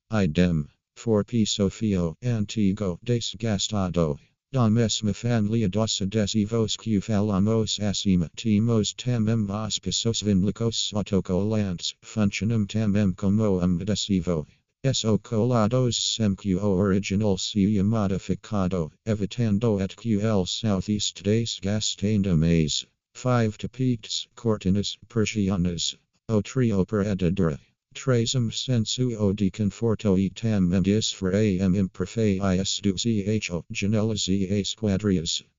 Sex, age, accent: male, 50-69, American